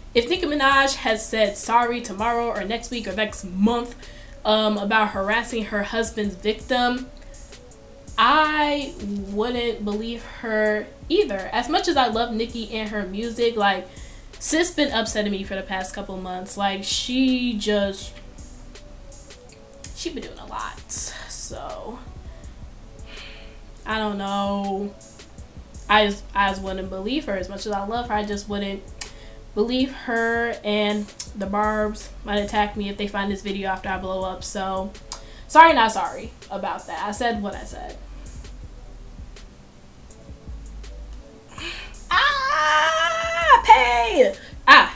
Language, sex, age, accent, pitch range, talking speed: English, female, 10-29, American, 200-240 Hz, 135 wpm